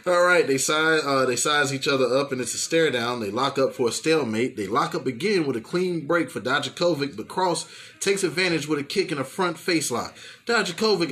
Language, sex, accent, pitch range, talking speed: English, male, American, 130-190 Hz, 230 wpm